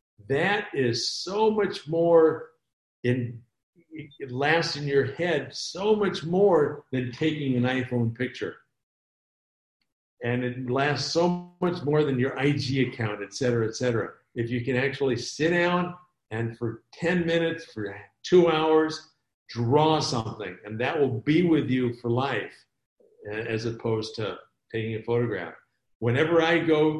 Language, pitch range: English, 120-150 Hz